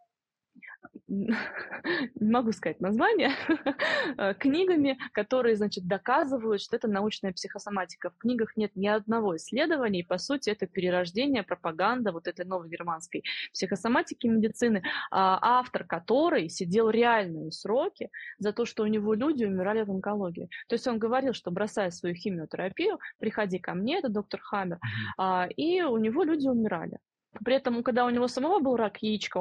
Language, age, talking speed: Russian, 20-39, 145 wpm